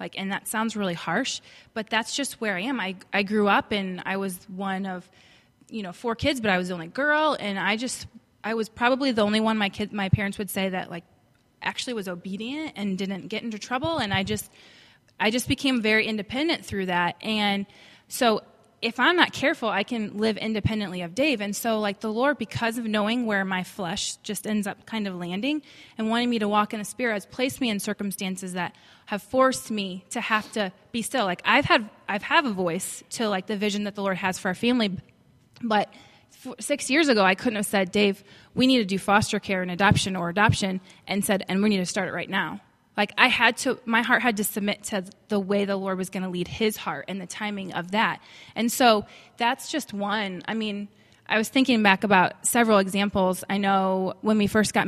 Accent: American